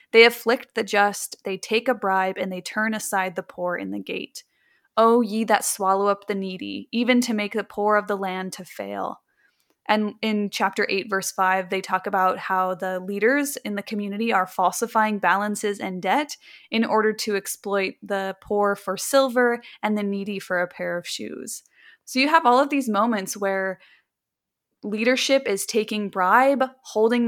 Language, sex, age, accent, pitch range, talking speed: English, female, 20-39, American, 195-235 Hz, 185 wpm